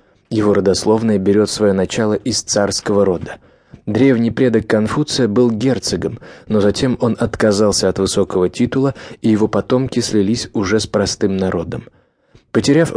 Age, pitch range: 20-39, 105-125 Hz